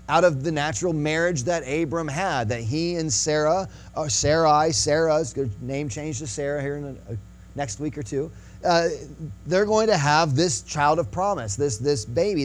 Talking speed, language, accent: 190 wpm, English, American